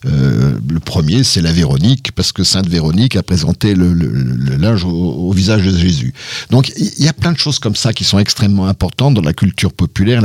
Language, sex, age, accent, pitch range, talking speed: French, male, 50-69, French, 100-140 Hz, 220 wpm